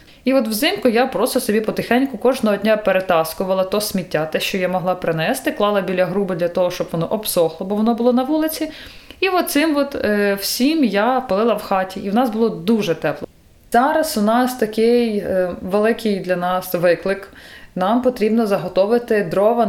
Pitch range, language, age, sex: 190-240 Hz, Ukrainian, 20-39, female